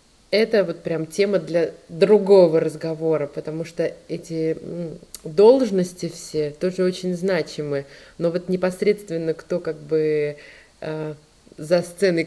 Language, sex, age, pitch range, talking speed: Russian, female, 20-39, 150-190 Hz, 110 wpm